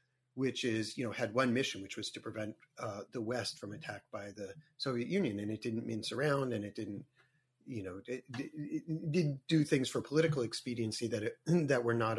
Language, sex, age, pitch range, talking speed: English, male, 40-59, 110-140 Hz, 215 wpm